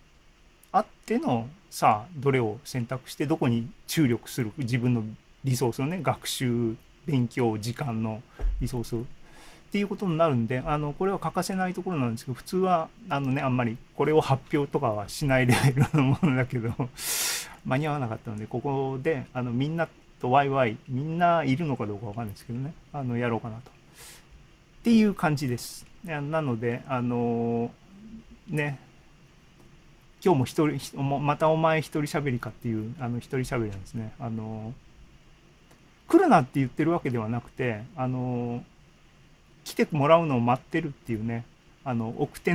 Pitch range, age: 120-160 Hz, 40-59